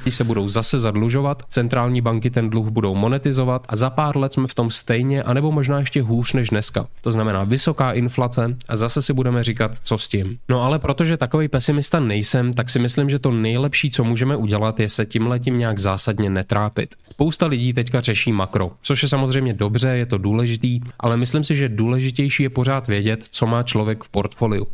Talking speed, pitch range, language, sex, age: 200 wpm, 110-130 Hz, Czech, male, 20-39